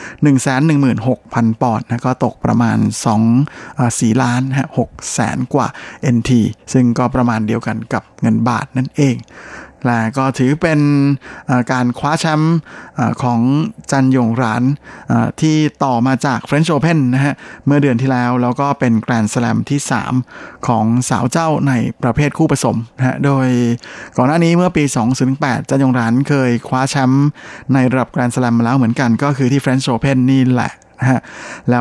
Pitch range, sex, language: 120-140 Hz, male, Thai